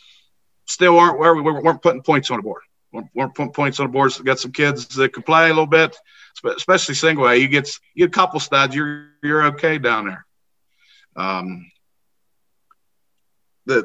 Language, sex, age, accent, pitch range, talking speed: English, male, 50-69, American, 125-155 Hz, 190 wpm